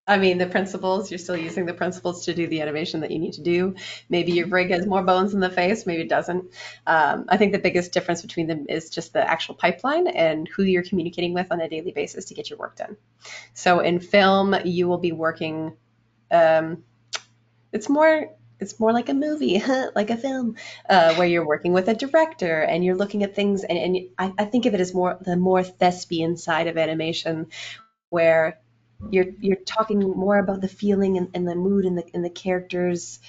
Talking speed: 215 wpm